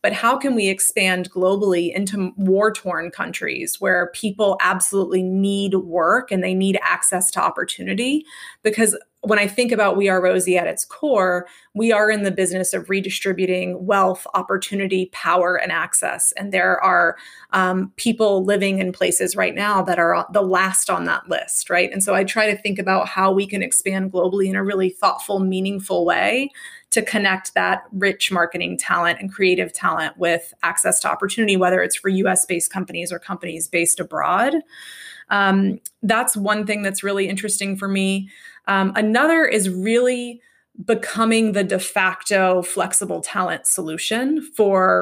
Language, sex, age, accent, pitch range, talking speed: English, female, 20-39, American, 185-210 Hz, 165 wpm